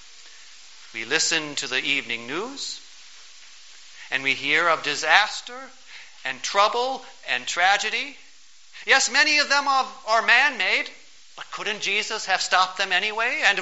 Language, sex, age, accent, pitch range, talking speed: English, male, 50-69, American, 175-225 Hz, 130 wpm